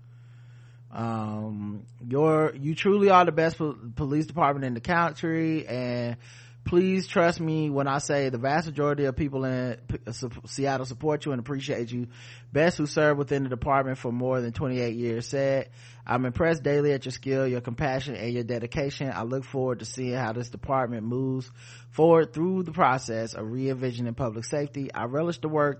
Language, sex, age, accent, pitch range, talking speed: English, male, 20-39, American, 120-145 Hz, 175 wpm